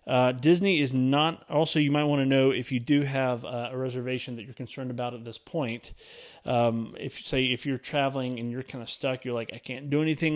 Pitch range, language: 115-140 Hz, English